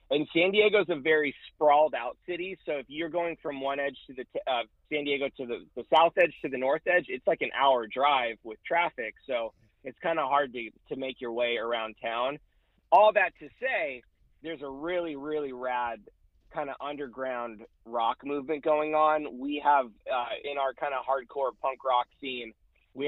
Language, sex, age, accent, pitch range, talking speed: English, male, 20-39, American, 120-150 Hz, 205 wpm